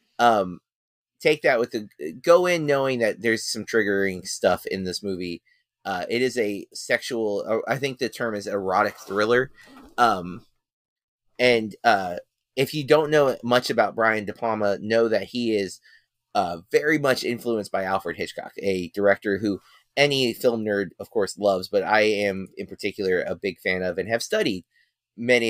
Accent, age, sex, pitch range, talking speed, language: American, 30-49, male, 100-125 Hz, 170 wpm, English